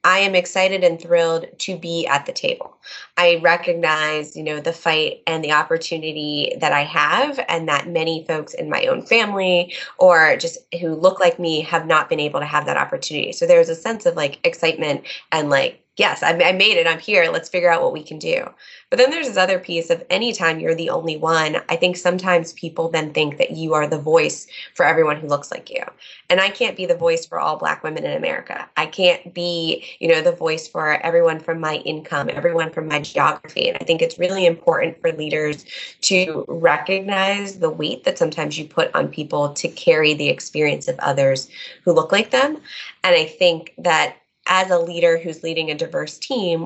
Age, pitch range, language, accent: 20-39, 160-265 Hz, English, American